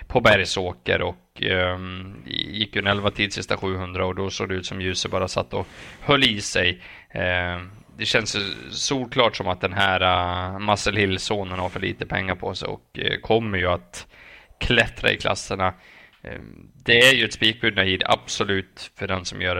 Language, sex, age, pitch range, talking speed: Swedish, male, 20-39, 95-105 Hz, 185 wpm